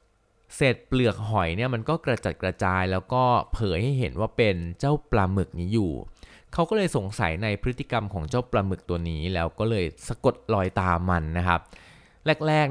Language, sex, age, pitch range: Thai, male, 20-39, 95-120 Hz